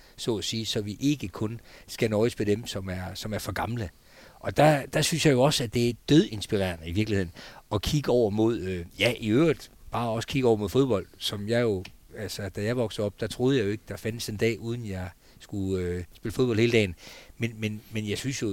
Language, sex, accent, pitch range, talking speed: Danish, male, native, 100-135 Hz, 245 wpm